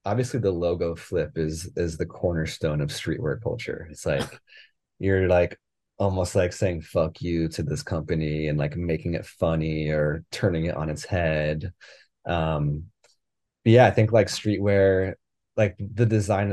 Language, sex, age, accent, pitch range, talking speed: English, male, 30-49, American, 80-95 Hz, 160 wpm